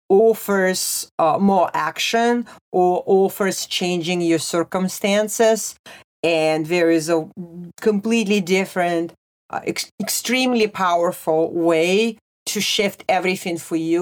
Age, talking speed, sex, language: 40-59, 105 wpm, female, English